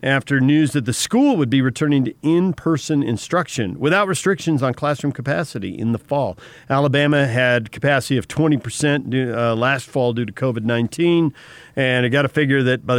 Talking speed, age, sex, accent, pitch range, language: 165 wpm, 50-69, male, American, 110-145 Hz, English